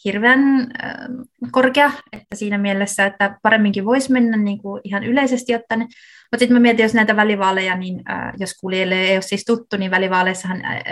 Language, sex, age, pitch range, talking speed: Finnish, female, 20-39, 185-210 Hz, 180 wpm